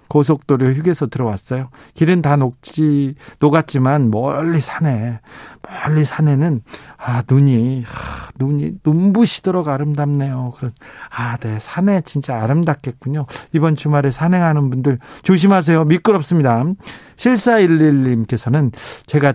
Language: Korean